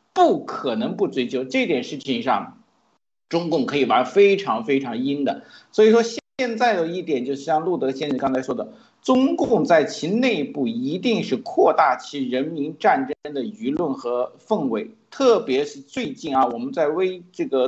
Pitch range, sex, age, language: 150-250 Hz, male, 50-69, Chinese